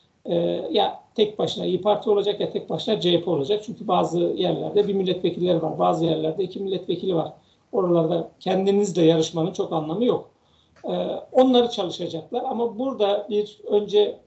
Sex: male